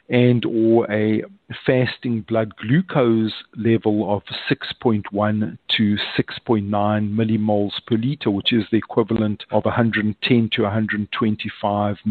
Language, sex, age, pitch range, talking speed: English, male, 50-69, 105-120 Hz, 105 wpm